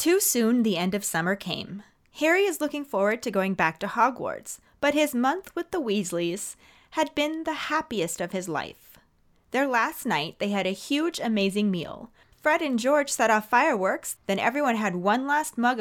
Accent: American